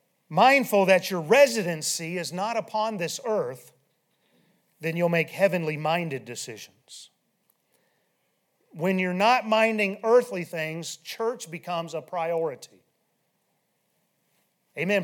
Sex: male